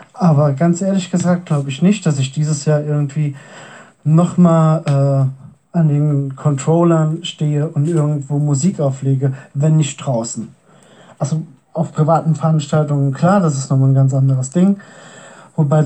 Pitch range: 150-175 Hz